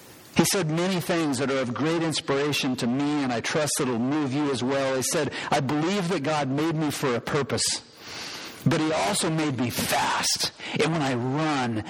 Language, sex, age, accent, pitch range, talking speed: English, male, 50-69, American, 135-165 Hz, 205 wpm